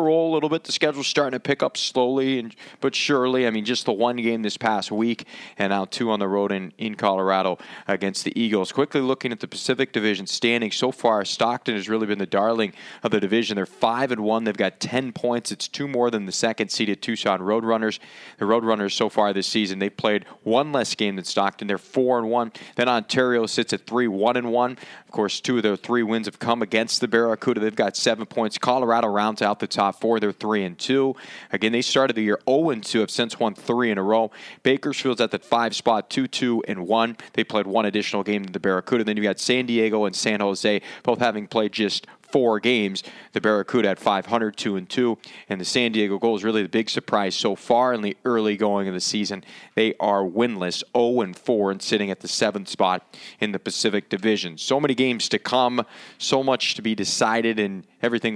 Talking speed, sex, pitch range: 225 wpm, male, 105-125 Hz